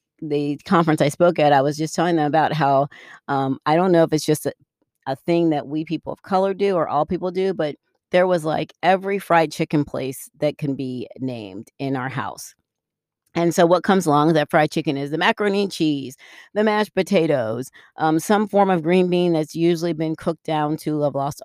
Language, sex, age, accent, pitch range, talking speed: English, female, 40-59, American, 145-175 Hz, 220 wpm